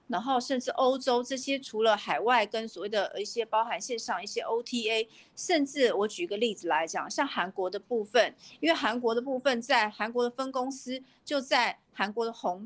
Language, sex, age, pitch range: Chinese, female, 50-69, 200-260 Hz